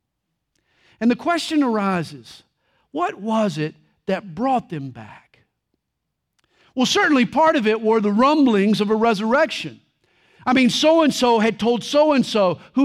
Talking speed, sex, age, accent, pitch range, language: 135 wpm, male, 50-69, American, 195-275 Hz, English